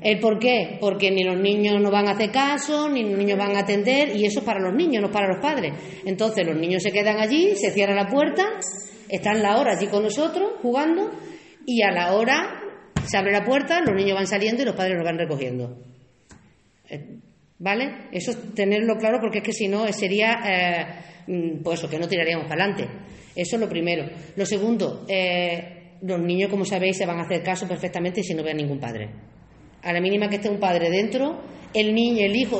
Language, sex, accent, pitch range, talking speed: Spanish, female, Spanish, 175-220 Hz, 210 wpm